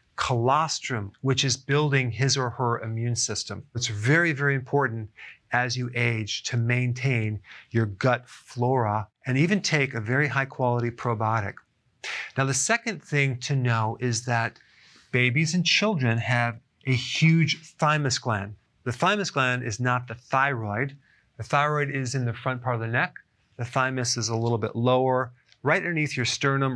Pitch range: 115-140 Hz